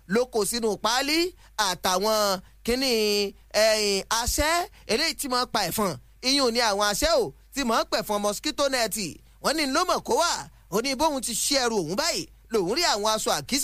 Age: 30-49